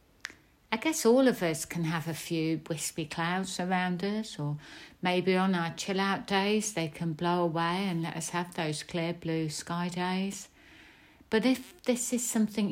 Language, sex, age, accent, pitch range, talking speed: English, female, 60-79, British, 160-190 Hz, 180 wpm